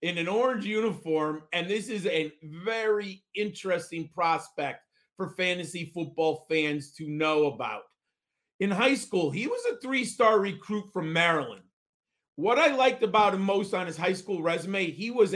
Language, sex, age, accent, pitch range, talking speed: English, male, 40-59, American, 170-225 Hz, 160 wpm